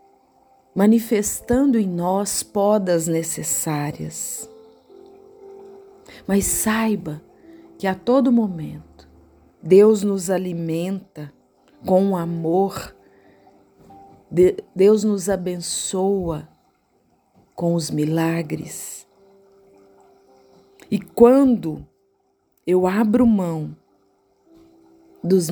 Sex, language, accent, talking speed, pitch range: female, Portuguese, Brazilian, 70 wpm, 160-205 Hz